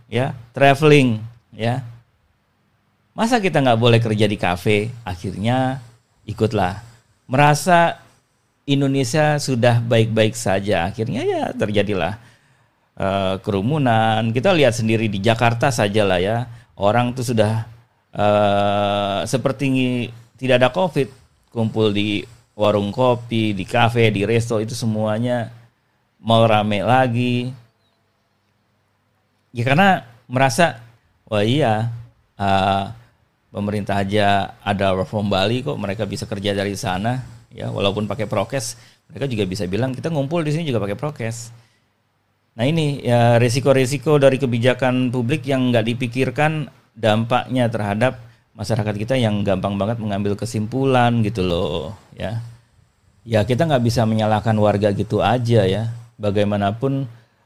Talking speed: 120 wpm